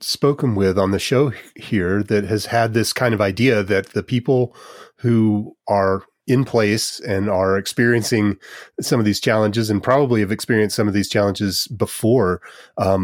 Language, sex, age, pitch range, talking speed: English, male, 30-49, 100-120 Hz, 170 wpm